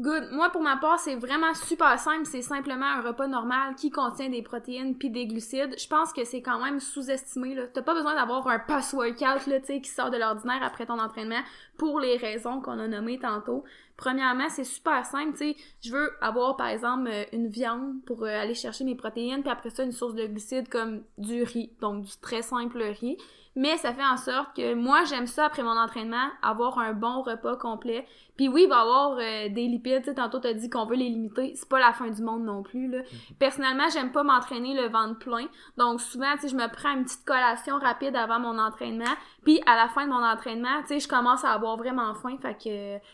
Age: 20-39